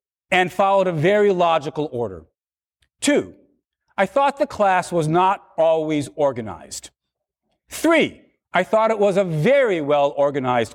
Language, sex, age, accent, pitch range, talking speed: English, male, 50-69, American, 140-220 Hz, 130 wpm